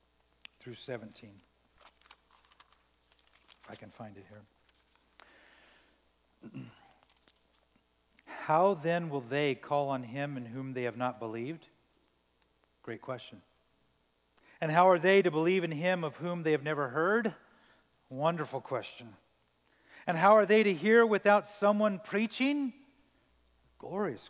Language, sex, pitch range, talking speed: English, male, 110-185 Hz, 120 wpm